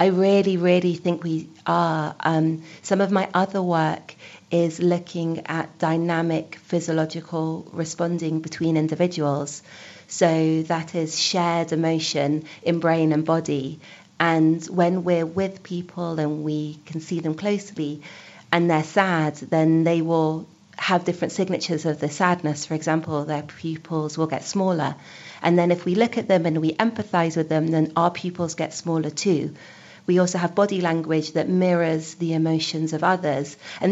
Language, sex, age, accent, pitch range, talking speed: English, female, 40-59, British, 160-180 Hz, 155 wpm